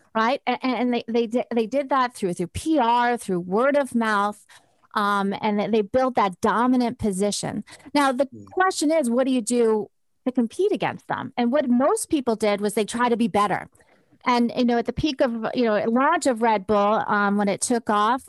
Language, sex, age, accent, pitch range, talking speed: English, female, 30-49, American, 220-285 Hz, 205 wpm